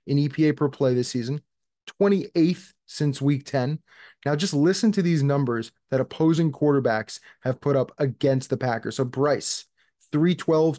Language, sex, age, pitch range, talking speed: English, male, 20-39, 130-155 Hz, 155 wpm